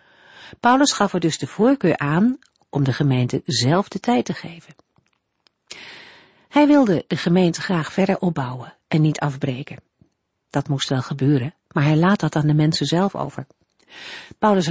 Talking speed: 160 wpm